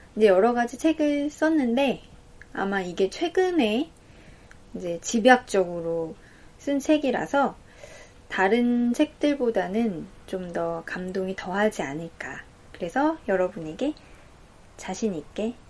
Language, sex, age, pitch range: Korean, female, 20-39, 190-270 Hz